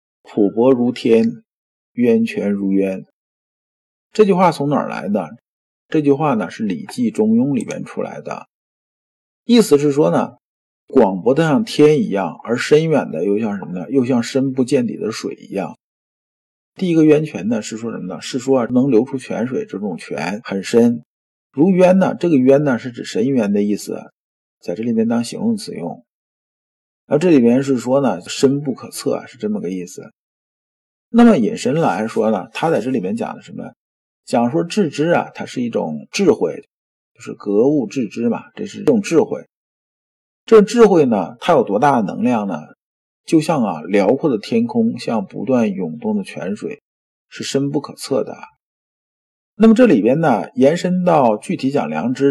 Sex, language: male, Chinese